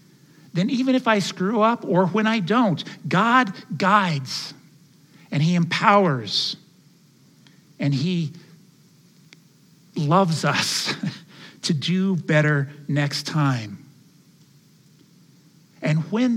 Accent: American